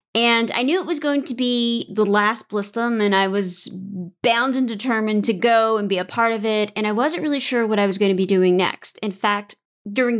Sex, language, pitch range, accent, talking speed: female, English, 210-250 Hz, American, 240 wpm